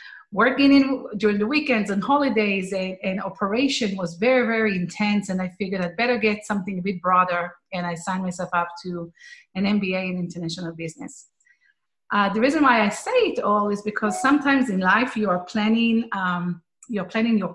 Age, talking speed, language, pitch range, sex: 30-49, 190 wpm, English, 185-225 Hz, female